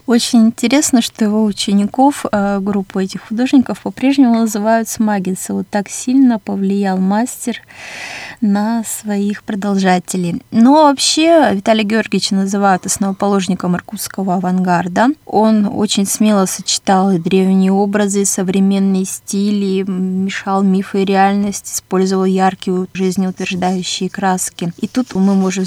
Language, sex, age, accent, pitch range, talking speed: Russian, female, 20-39, native, 185-215 Hz, 110 wpm